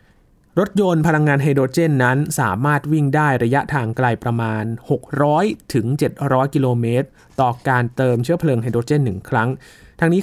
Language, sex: Thai, male